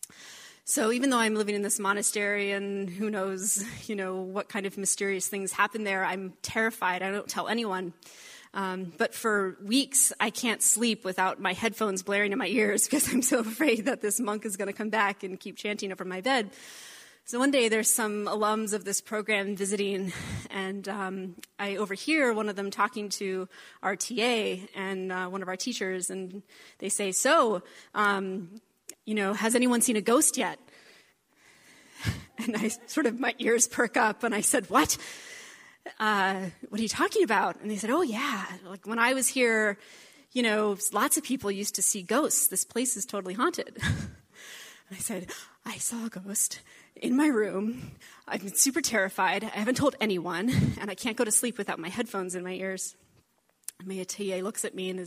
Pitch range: 195-235 Hz